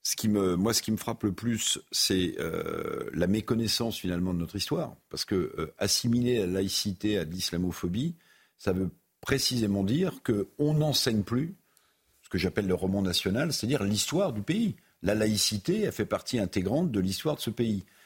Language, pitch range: French, 90-120 Hz